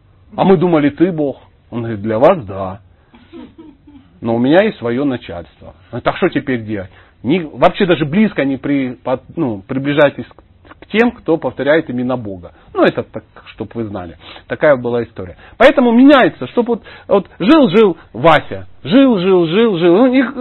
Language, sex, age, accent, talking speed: Russian, male, 40-59, native, 155 wpm